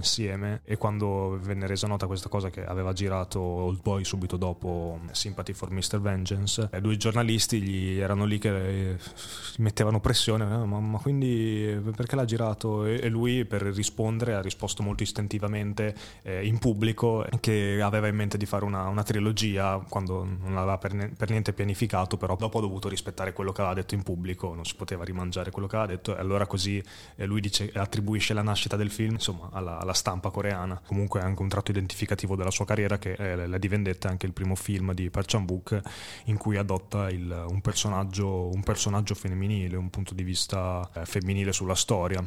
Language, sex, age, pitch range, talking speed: Italian, male, 20-39, 95-105 Hz, 190 wpm